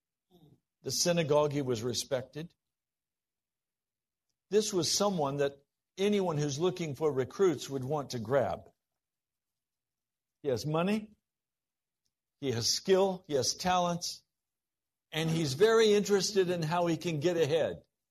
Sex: male